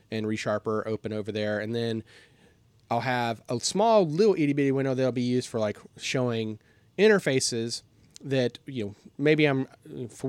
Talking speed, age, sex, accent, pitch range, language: 165 wpm, 30-49, male, American, 115-150 Hz, English